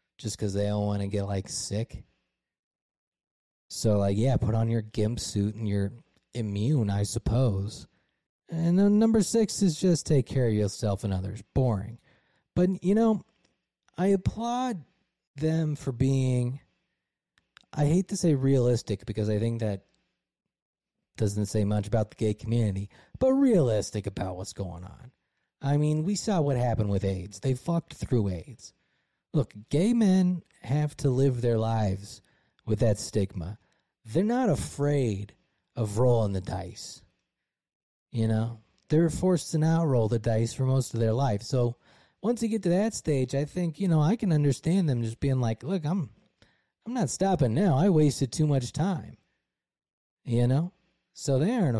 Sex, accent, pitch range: male, American, 110-165 Hz